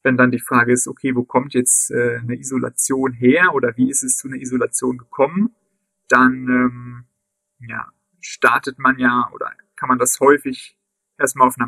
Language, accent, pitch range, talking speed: German, German, 125-145 Hz, 175 wpm